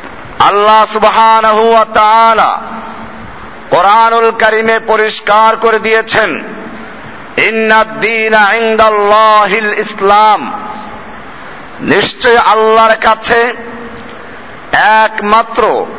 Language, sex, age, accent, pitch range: Bengali, male, 50-69, native, 210-225 Hz